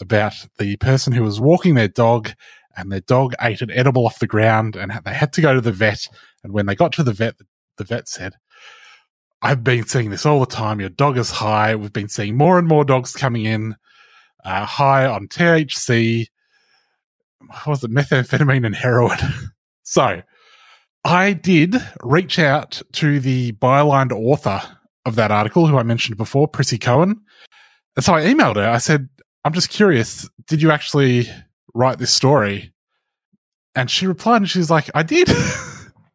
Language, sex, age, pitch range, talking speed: English, male, 30-49, 115-160 Hz, 175 wpm